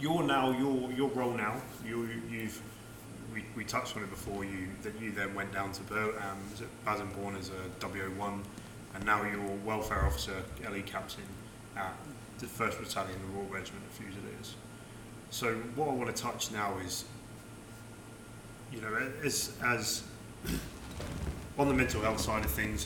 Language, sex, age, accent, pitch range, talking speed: English, male, 20-39, British, 100-115 Hz, 160 wpm